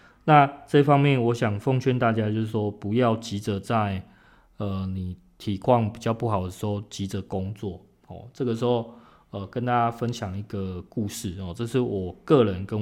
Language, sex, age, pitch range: Chinese, male, 20-39, 100-120 Hz